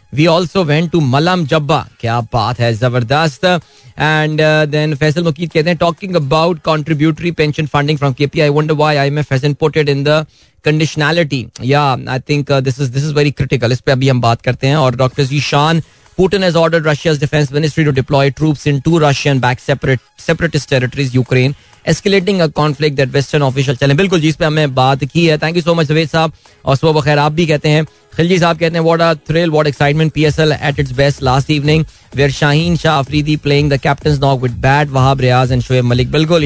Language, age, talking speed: Hindi, 20-39, 140 wpm